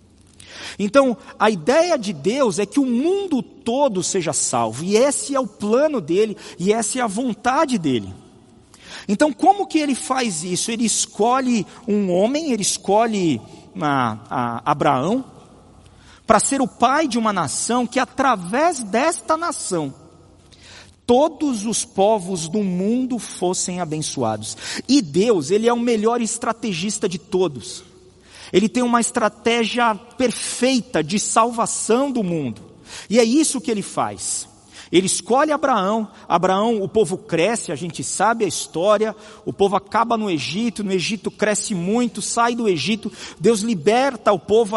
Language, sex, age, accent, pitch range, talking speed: Portuguese, male, 50-69, Brazilian, 180-245 Hz, 145 wpm